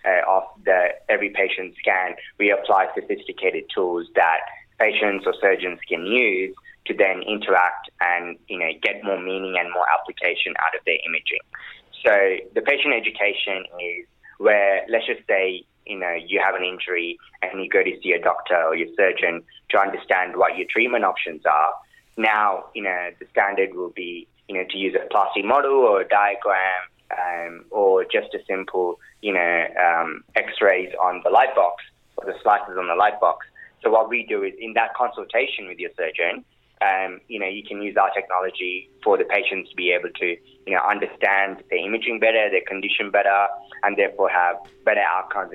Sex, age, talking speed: male, 20-39, 185 wpm